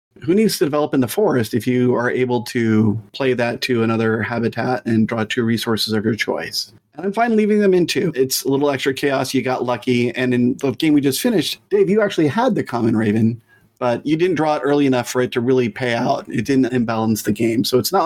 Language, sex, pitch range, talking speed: English, male, 115-140 Hz, 245 wpm